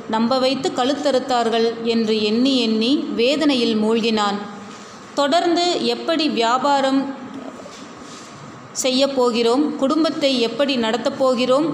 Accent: native